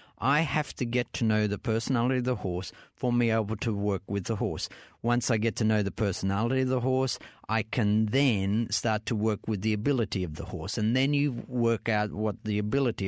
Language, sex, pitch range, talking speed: English, male, 105-130 Hz, 225 wpm